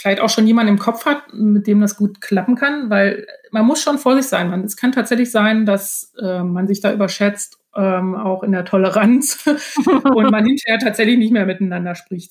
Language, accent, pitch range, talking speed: German, German, 195-235 Hz, 210 wpm